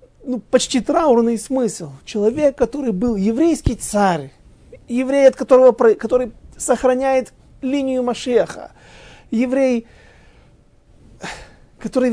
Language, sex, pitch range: Russian, male, 165-235 Hz